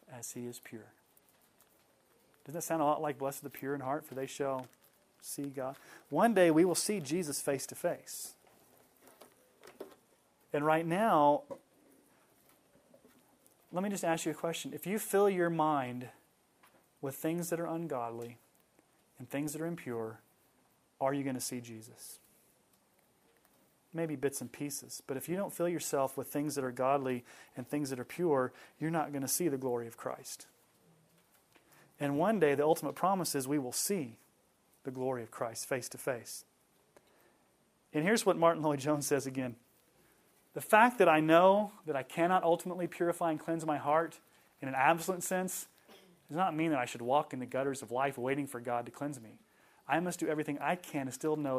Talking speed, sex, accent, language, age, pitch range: 185 wpm, male, American, English, 30-49, 130-165 Hz